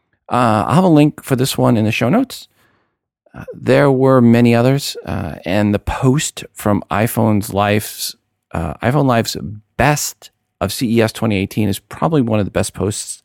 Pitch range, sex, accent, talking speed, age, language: 90-115 Hz, male, American, 170 wpm, 40-59, English